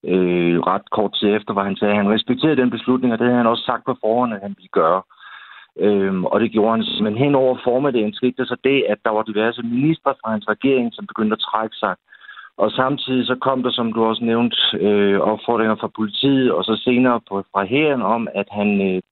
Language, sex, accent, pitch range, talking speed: Danish, male, native, 100-120 Hz, 225 wpm